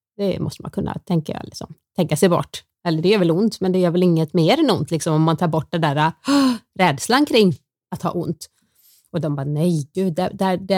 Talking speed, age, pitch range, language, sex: 235 wpm, 30-49, 165-210 Hz, Swedish, female